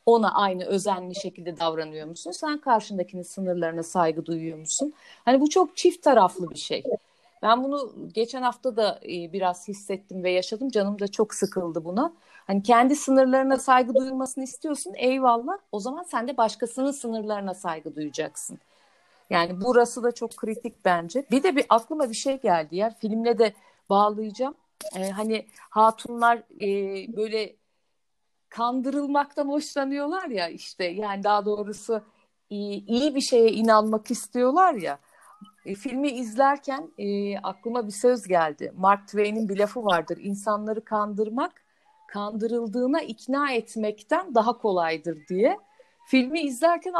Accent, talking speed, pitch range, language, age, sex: native, 135 wpm, 200-275 Hz, Turkish, 50-69, female